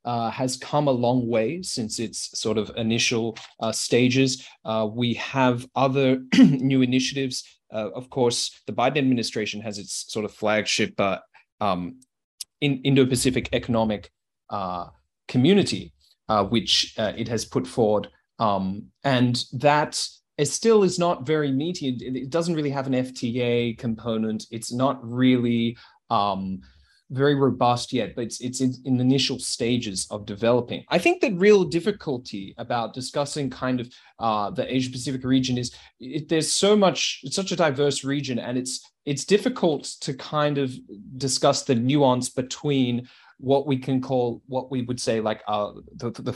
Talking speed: 155 wpm